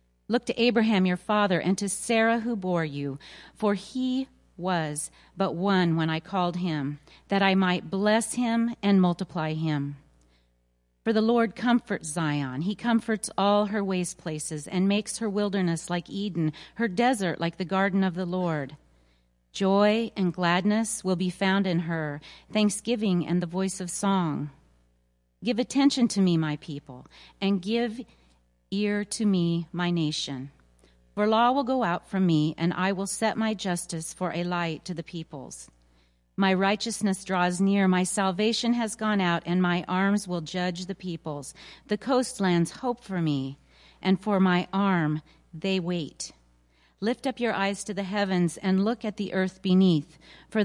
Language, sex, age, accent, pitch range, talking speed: English, female, 40-59, American, 160-205 Hz, 165 wpm